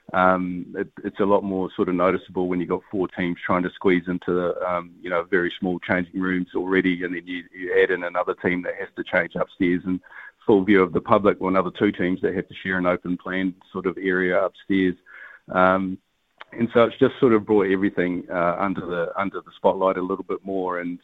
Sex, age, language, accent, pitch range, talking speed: male, 40-59, English, Australian, 90-95 Hz, 225 wpm